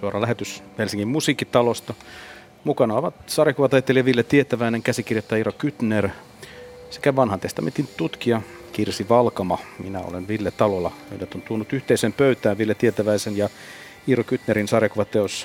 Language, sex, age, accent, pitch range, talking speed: Finnish, male, 50-69, native, 100-130 Hz, 130 wpm